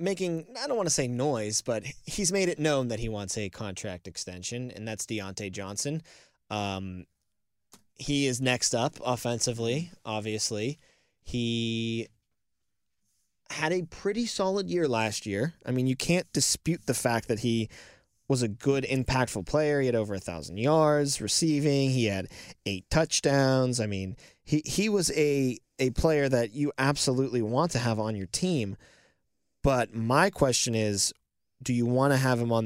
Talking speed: 165 wpm